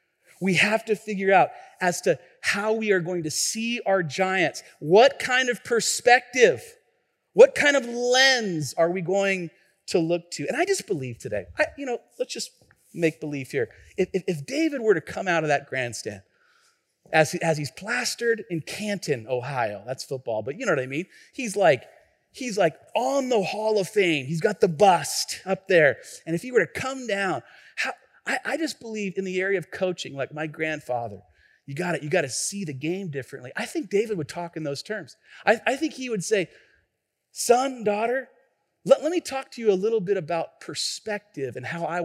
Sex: male